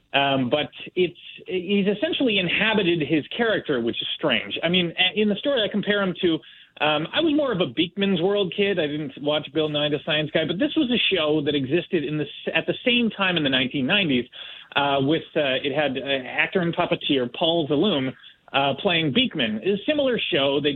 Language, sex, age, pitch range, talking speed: English, male, 30-49, 140-190 Hz, 210 wpm